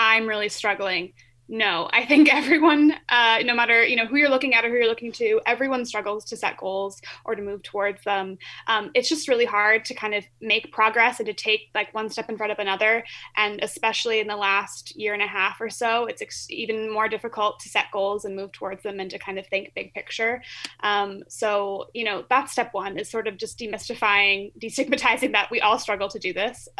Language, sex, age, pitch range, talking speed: English, female, 20-39, 200-235 Hz, 225 wpm